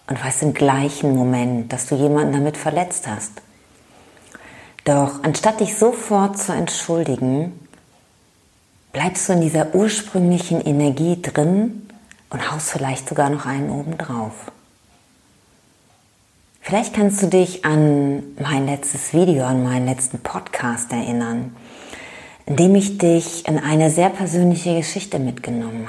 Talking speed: 125 wpm